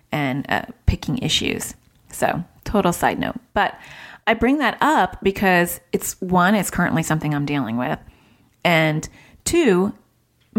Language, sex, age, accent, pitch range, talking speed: English, female, 30-49, American, 160-215 Hz, 140 wpm